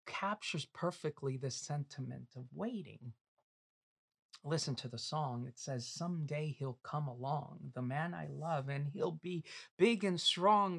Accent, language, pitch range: American, English, 140-190 Hz